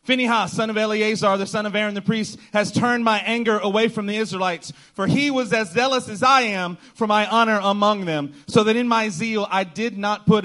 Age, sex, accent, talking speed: 30-49, male, American, 230 wpm